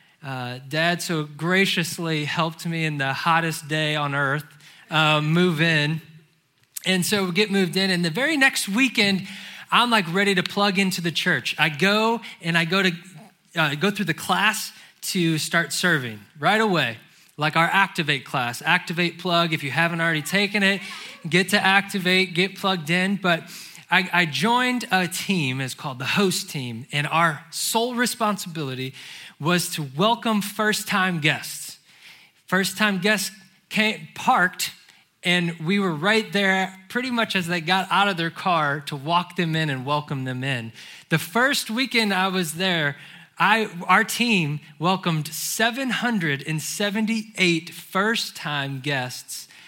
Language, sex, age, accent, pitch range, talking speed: English, male, 20-39, American, 160-200 Hz, 155 wpm